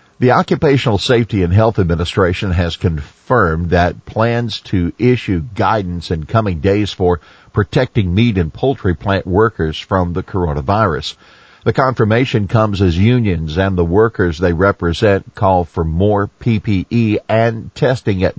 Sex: male